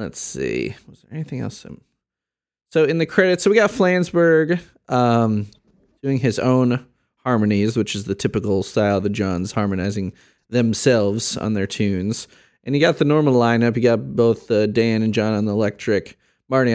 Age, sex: 30-49, male